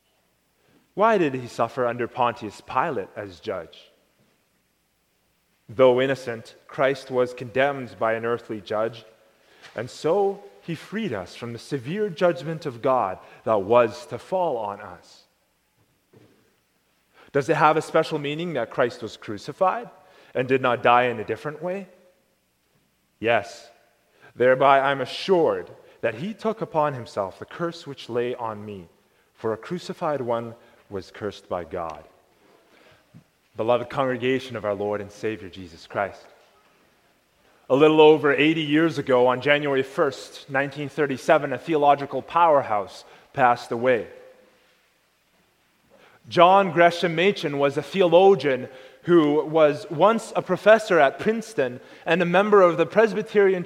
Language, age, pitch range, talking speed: English, 30-49, 125-180 Hz, 135 wpm